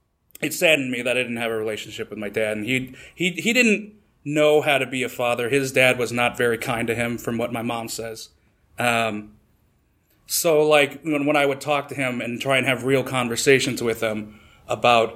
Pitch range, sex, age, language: 120-170 Hz, male, 30-49, English